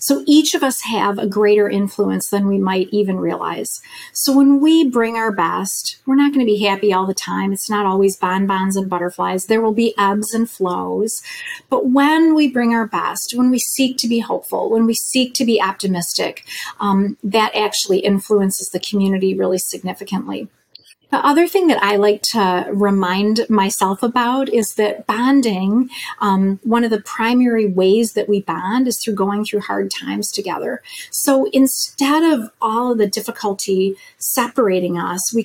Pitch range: 195-235 Hz